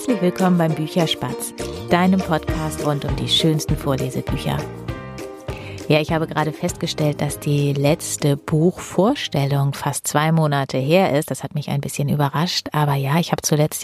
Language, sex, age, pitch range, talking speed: German, female, 30-49, 150-180 Hz, 155 wpm